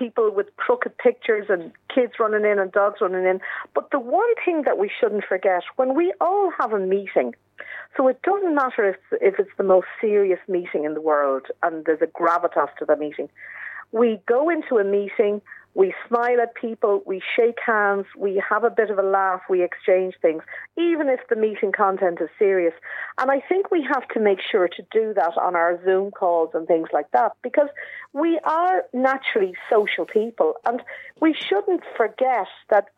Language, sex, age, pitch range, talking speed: English, female, 50-69, 195-325 Hz, 195 wpm